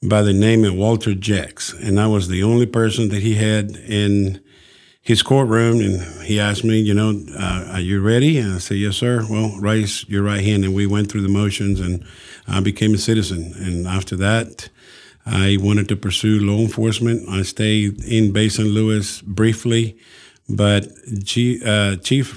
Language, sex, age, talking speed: English, male, 50-69, 185 wpm